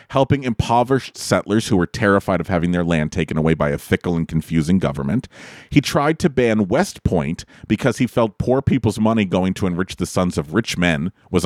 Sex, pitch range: male, 95-140 Hz